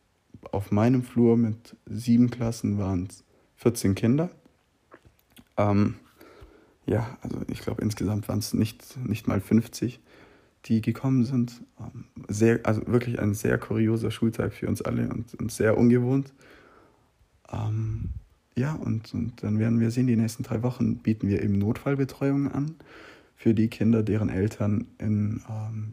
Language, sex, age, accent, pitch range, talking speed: German, male, 20-39, German, 105-120 Hz, 150 wpm